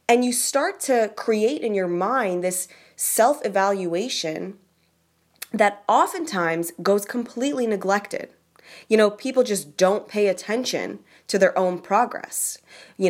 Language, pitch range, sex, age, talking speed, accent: English, 170-240 Hz, female, 20-39, 125 wpm, American